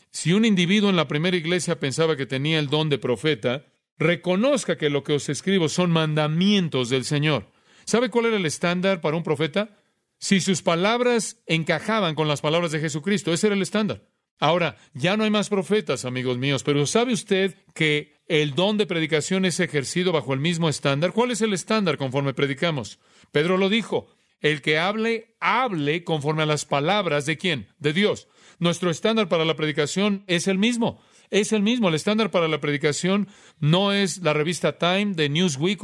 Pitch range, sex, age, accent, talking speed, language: 145-195 Hz, male, 40-59, Mexican, 185 wpm, Spanish